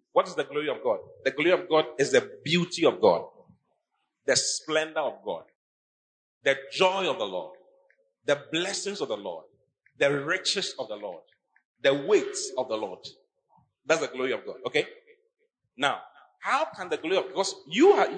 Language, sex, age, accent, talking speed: English, male, 40-59, Nigerian, 180 wpm